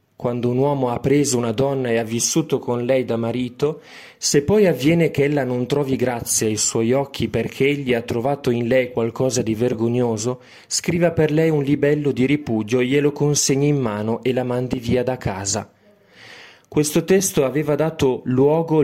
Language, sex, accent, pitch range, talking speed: Italian, male, native, 120-150 Hz, 180 wpm